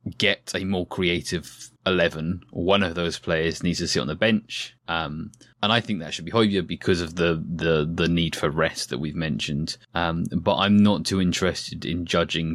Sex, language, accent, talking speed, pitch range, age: male, English, British, 200 wpm, 80-95 Hz, 20-39